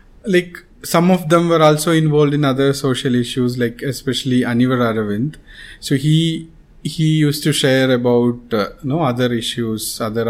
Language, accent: English, Indian